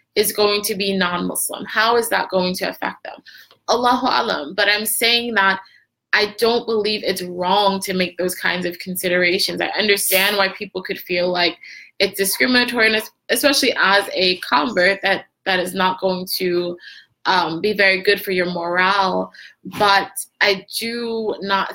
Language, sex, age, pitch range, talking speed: English, female, 20-39, 185-225 Hz, 170 wpm